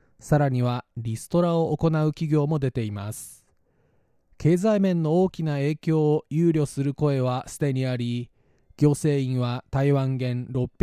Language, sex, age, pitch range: Japanese, male, 20-39, 125-155 Hz